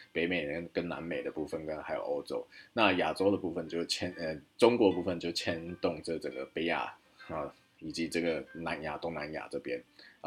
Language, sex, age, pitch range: Chinese, male, 20-39, 85-100 Hz